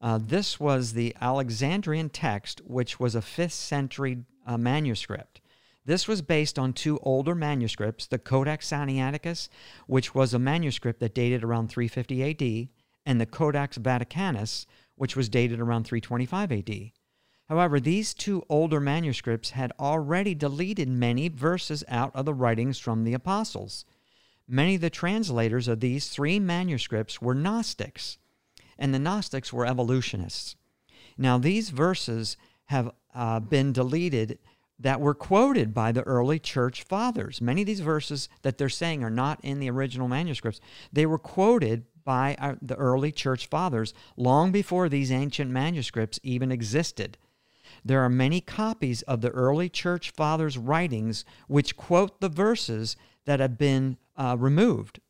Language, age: English, 50-69